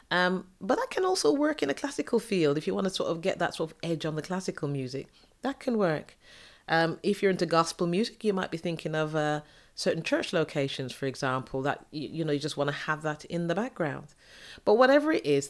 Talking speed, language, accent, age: 235 wpm, English, British, 30-49